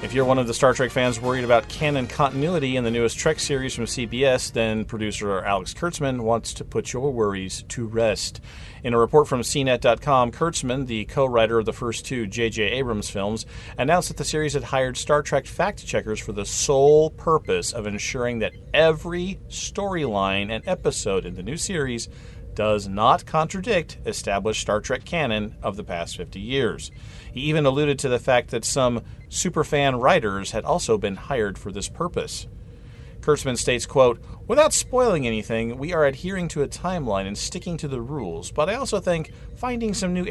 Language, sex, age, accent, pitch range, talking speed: English, male, 40-59, American, 115-150 Hz, 180 wpm